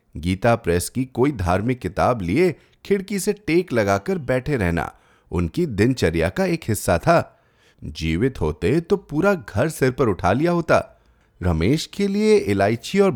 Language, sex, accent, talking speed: Hindi, male, native, 155 wpm